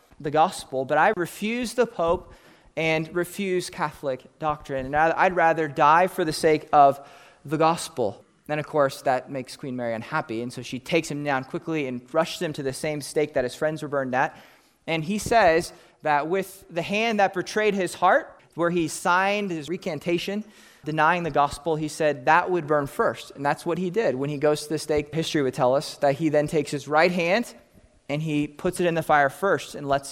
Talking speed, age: 210 wpm, 30-49